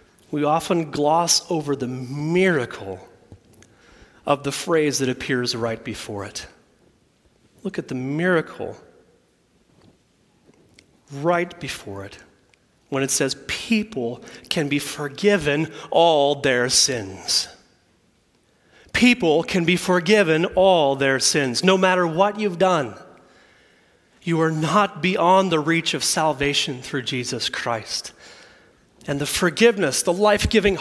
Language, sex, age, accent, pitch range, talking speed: English, male, 40-59, American, 135-185 Hz, 115 wpm